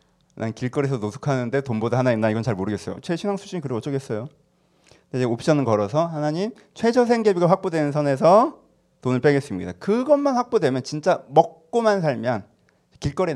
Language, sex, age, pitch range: Korean, male, 30-49, 115-175 Hz